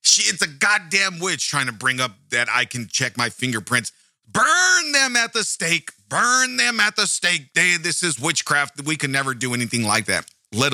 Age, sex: 30-49, male